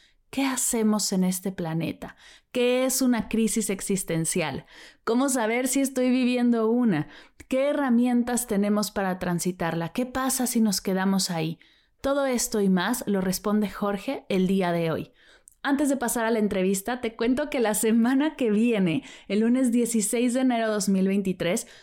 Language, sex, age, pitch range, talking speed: Spanish, female, 20-39, 205-260 Hz, 160 wpm